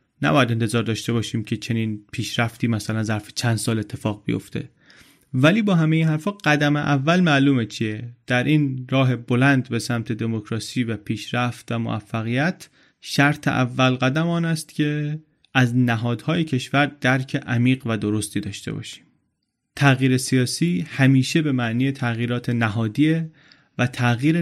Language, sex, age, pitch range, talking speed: Persian, male, 30-49, 115-145 Hz, 140 wpm